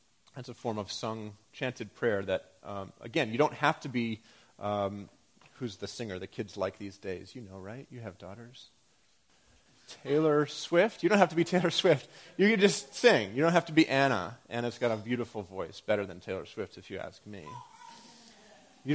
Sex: male